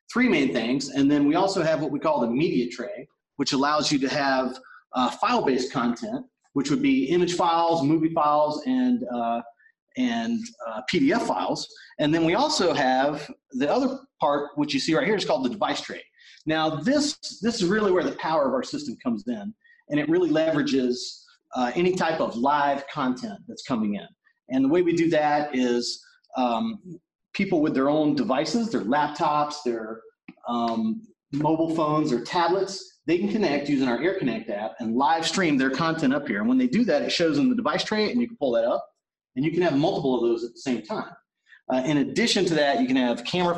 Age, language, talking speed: 40-59, English, 210 wpm